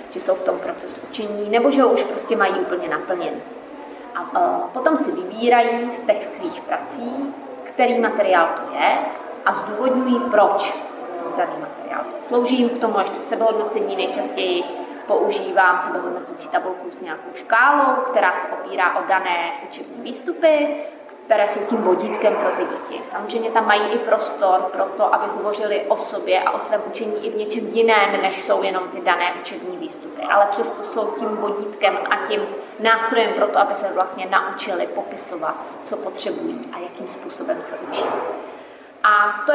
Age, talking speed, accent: 20-39, 160 wpm, native